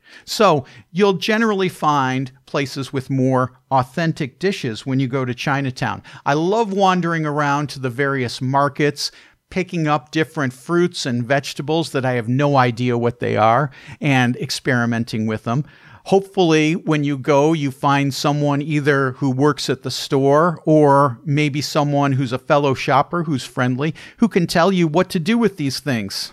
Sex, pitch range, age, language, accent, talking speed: male, 130-165 Hz, 50-69, English, American, 165 wpm